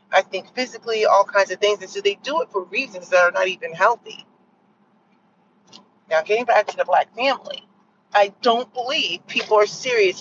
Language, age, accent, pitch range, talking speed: English, 40-59, American, 195-245 Hz, 190 wpm